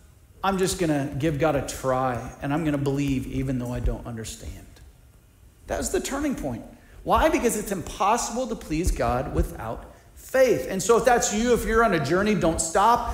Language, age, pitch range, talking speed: English, 40-59, 180-240 Hz, 185 wpm